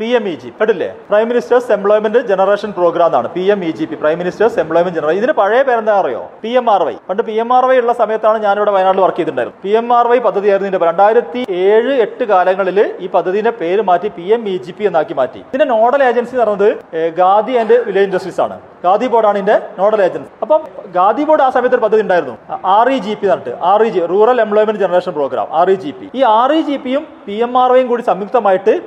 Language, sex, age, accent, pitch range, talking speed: Malayalam, male, 40-59, native, 190-245 Hz, 190 wpm